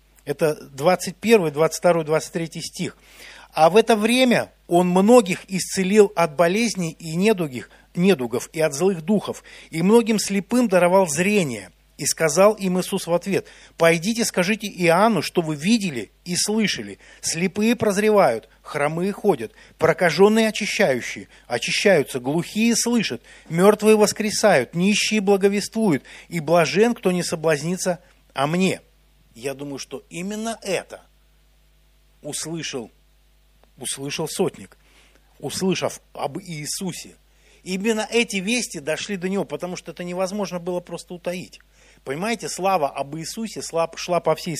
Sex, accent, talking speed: male, native, 125 wpm